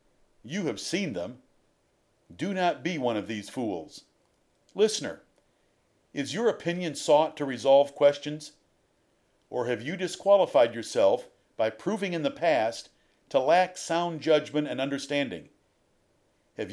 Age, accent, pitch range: 50-69, American, 140-180 Hz